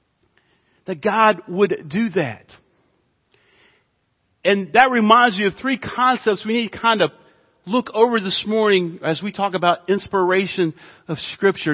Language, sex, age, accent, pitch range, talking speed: English, male, 40-59, American, 150-205 Hz, 145 wpm